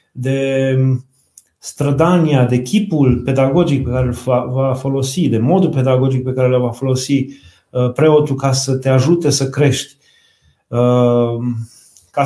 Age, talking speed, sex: 30-49, 125 wpm, male